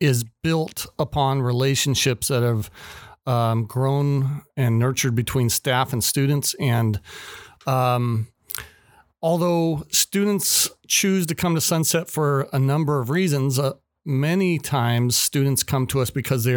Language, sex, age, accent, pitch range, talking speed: English, male, 40-59, American, 130-160 Hz, 135 wpm